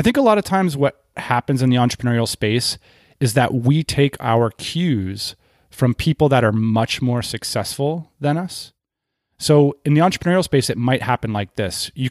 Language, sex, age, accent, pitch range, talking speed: English, male, 30-49, American, 110-145 Hz, 190 wpm